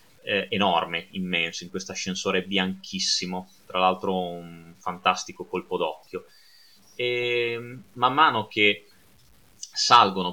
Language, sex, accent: Italian, male, native